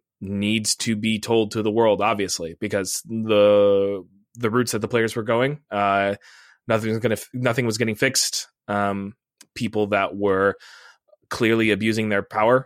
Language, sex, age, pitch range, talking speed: English, male, 20-39, 105-120 Hz, 155 wpm